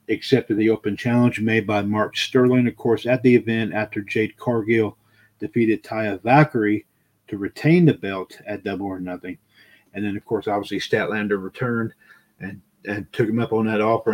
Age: 50-69